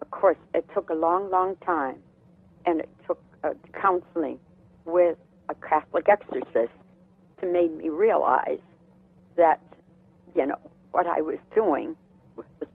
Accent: American